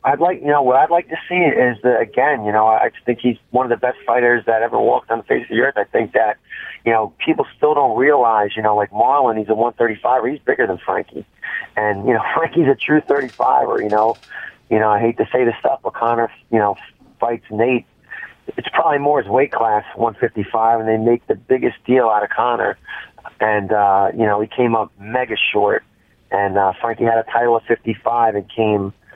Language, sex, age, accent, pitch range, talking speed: English, male, 30-49, American, 105-120 Hz, 225 wpm